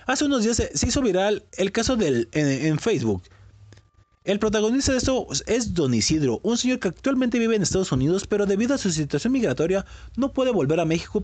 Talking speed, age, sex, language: 200 wpm, 30-49, male, Spanish